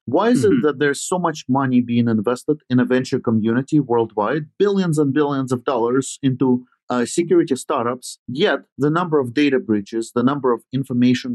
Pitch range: 120-150 Hz